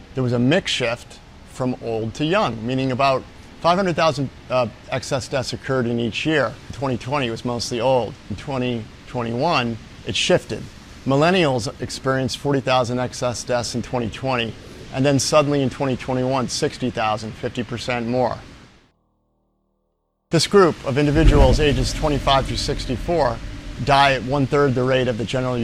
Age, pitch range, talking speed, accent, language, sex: 50-69, 115-135 Hz, 140 wpm, American, English, male